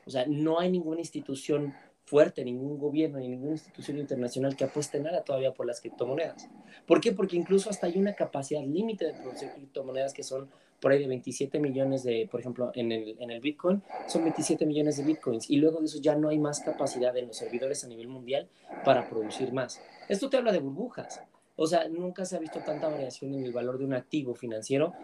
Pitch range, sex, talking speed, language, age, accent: 135-160 Hz, male, 210 wpm, Spanish, 30-49, Mexican